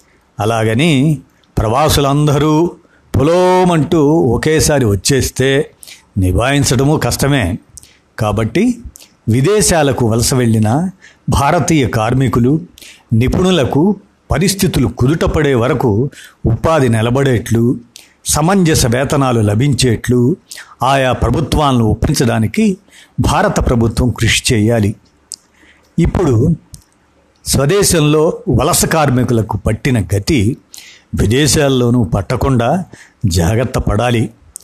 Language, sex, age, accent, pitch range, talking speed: Telugu, male, 60-79, native, 115-155 Hz, 70 wpm